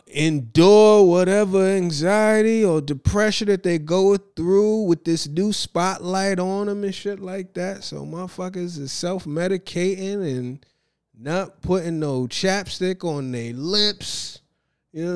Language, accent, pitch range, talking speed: English, American, 125-195 Hz, 135 wpm